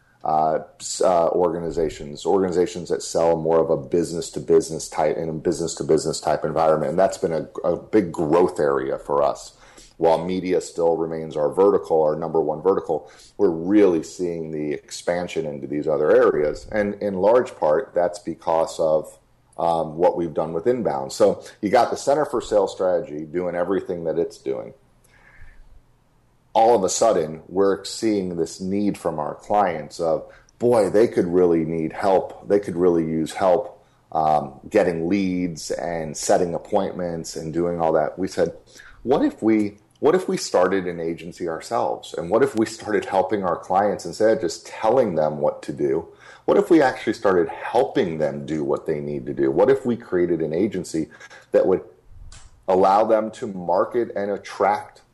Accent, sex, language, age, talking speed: American, male, English, 40-59, 175 wpm